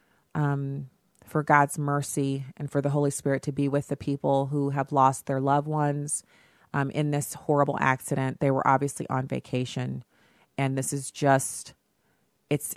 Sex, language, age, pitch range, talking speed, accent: female, English, 30-49, 140-160 Hz, 165 wpm, American